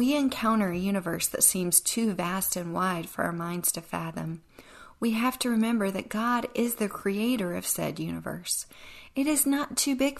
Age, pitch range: 40-59, 175-215 Hz